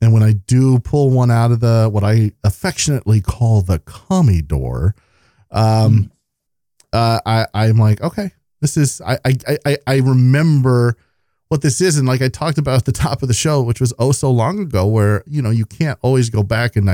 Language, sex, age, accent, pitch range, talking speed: English, male, 40-59, American, 100-130 Hz, 200 wpm